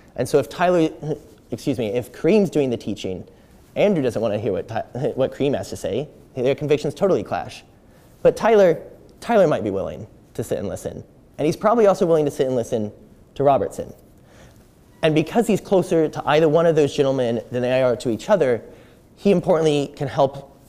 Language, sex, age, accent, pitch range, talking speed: English, male, 20-39, American, 120-155 Hz, 195 wpm